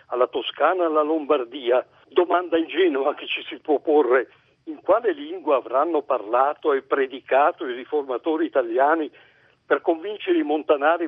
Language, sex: Italian, male